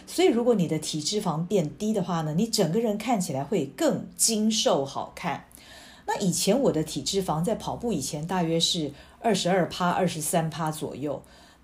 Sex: female